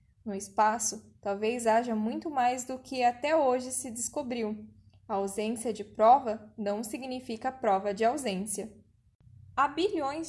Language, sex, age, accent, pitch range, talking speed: Portuguese, female, 10-29, Brazilian, 215-275 Hz, 135 wpm